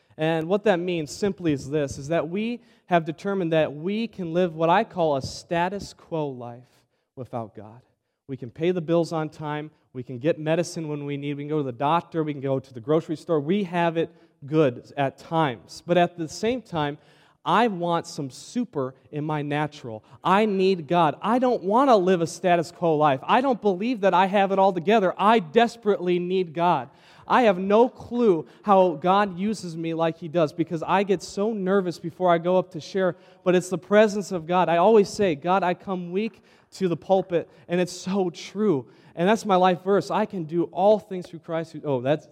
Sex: male